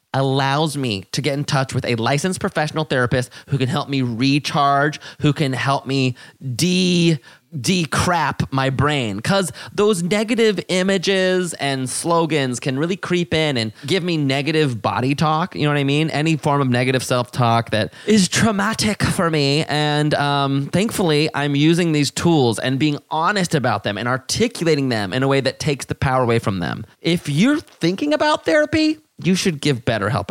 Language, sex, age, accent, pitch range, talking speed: English, male, 20-39, American, 130-175 Hz, 175 wpm